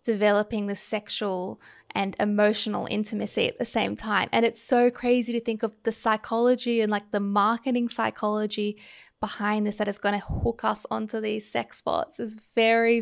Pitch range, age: 205-230 Hz, 10-29